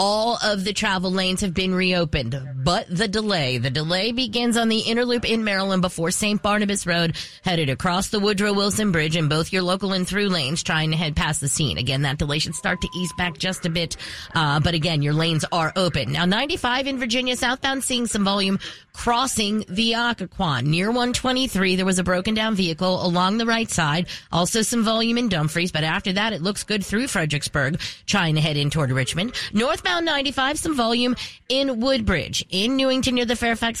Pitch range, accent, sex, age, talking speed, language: 170-225 Hz, American, female, 30-49, 200 wpm, English